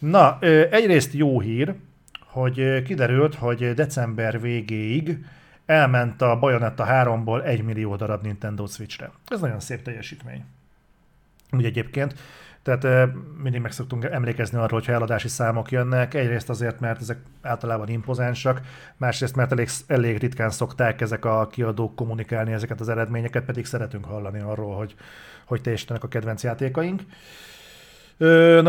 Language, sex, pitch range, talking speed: Hungarian, male, 115-145 Hz, 135 wpm